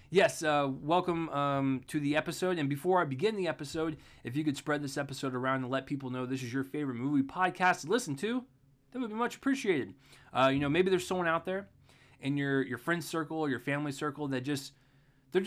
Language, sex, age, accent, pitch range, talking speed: English, male, 20-39, American, 135-190 Hz, 225 wpm